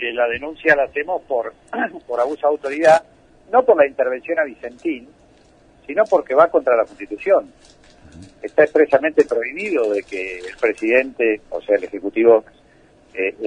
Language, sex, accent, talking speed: Spanish, male, Argentinian, 145 wpm